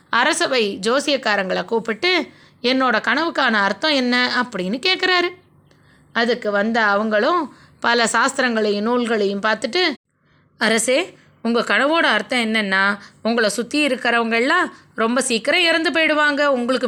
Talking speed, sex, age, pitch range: 105 wpm, female, 20-39, 220-290 Hz